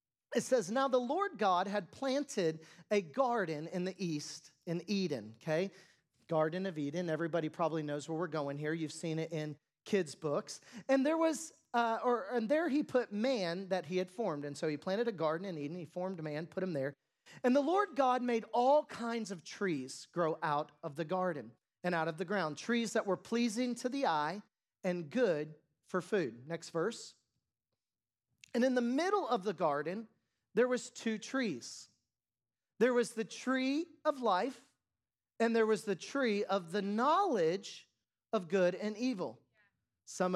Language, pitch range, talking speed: English, 160-245 Hz, 180 wpm